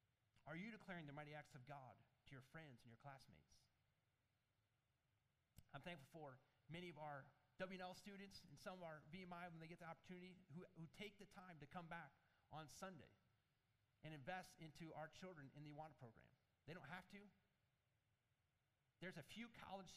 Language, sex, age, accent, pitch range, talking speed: English, male, 30-49, American, 125-180 Hz, 175 wpm